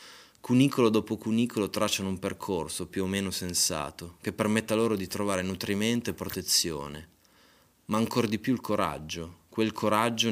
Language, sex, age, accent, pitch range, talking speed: Italian, male, 20-39, native, 90-110 Hz, 150 wpm